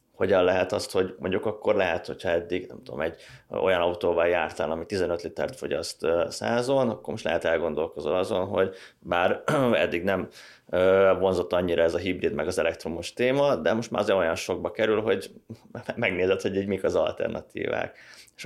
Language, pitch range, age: Hungarian, 95-120 Hz, 20-39